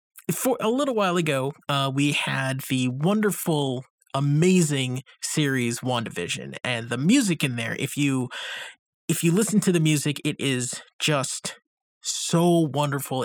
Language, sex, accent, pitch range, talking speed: English, male, American, 130-175 Hz, 140 wpm